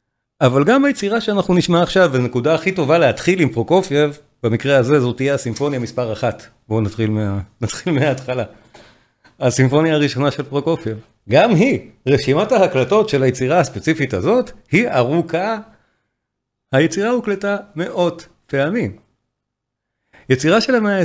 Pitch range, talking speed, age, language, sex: 125-185 Hz, 130 wpm, 40-59, Hebrew, male